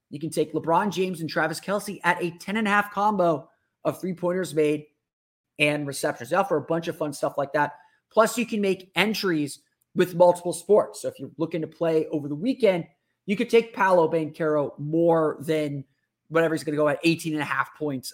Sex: male